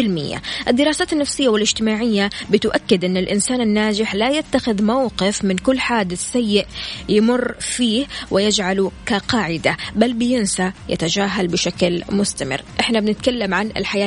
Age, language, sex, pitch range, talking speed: 20-39, Arabic, female, 195-250 Hz, 115 wpm